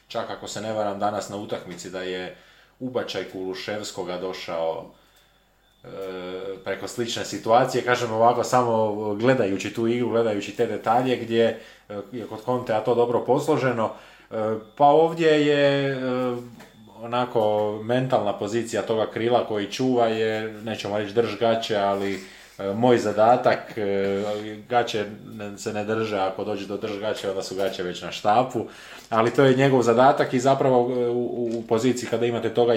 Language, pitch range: Croatian, 95-120 Hz